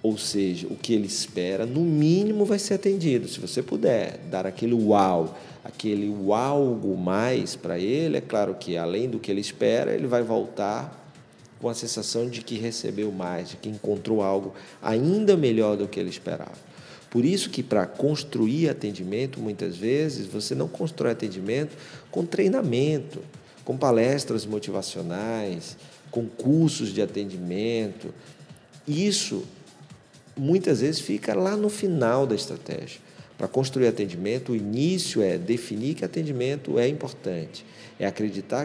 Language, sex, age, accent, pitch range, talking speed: Portuguese, male, 50-69, Brazilian, 100-145 Hz, 145 wpm